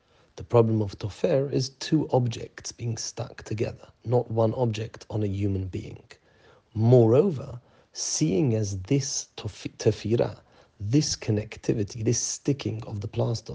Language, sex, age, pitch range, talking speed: English, male, 40-59, 110-130 Hz, 135 wpm